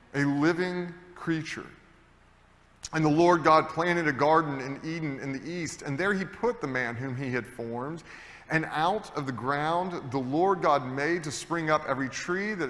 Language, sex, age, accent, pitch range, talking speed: English, male, 30-49, American, 120-160 Hz, 190 wpm